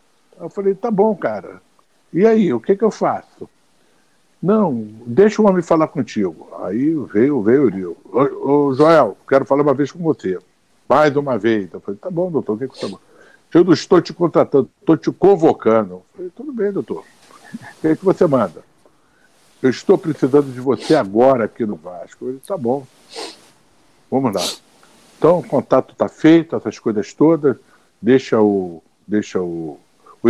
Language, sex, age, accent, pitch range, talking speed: Portuguese, male, 60-79, Brazilian, 115-175 Hz, 180 wpm